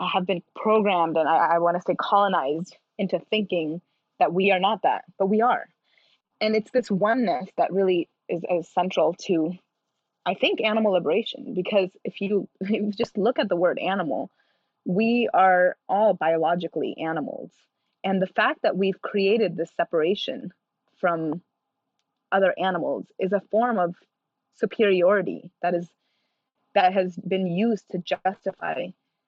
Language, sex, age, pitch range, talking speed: English, female, 20-39, 175-205 Hz, 150 wpm